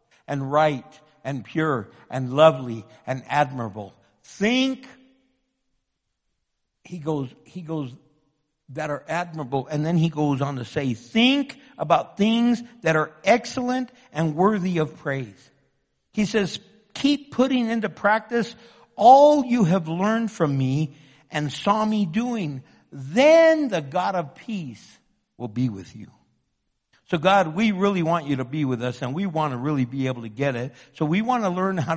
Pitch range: 135-200 Hz